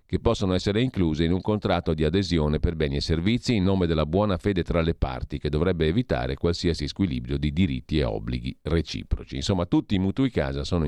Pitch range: 75-100 Hz